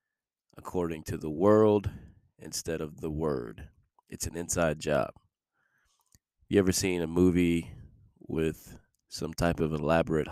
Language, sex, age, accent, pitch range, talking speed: English, male, 20-39, American, 80-100 Hz, 130 wpm